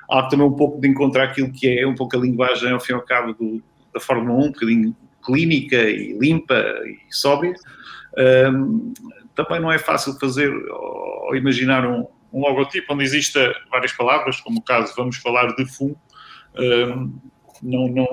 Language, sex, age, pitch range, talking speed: English, male, 50-69, 120-150 Hz, 180 wpm